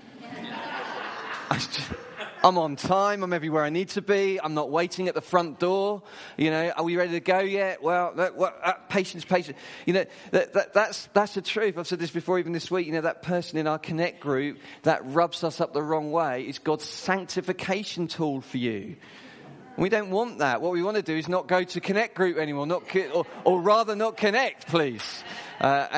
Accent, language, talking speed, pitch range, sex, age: British, English, 205 wpm, 120-185 Hz, male, 30-49